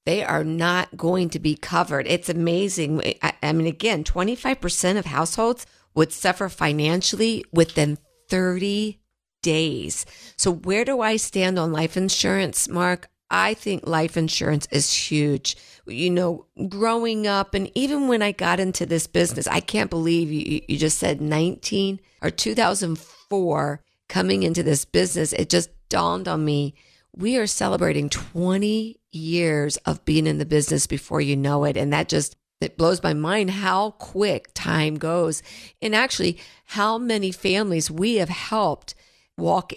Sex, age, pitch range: female, 50-69, 160-195 Hz